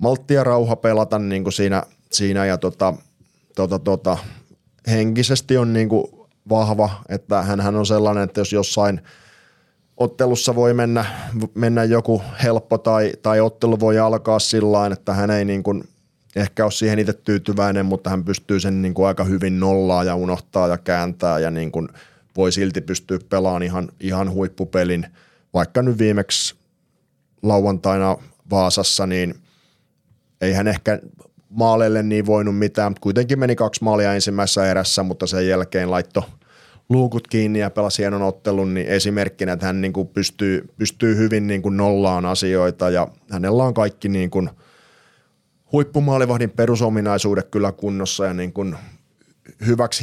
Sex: male